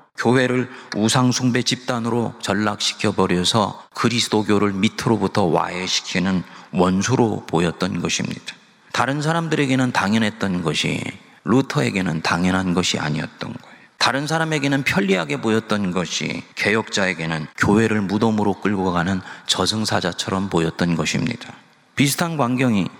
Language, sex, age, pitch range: Korean, male, 30-49, 105-135 Hz